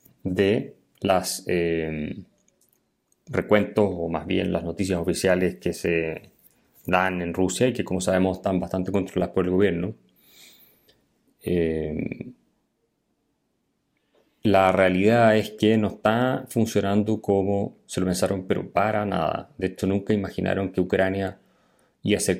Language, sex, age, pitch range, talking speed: Spanish, male, 30-49, 90-115 Hz, 130 wpm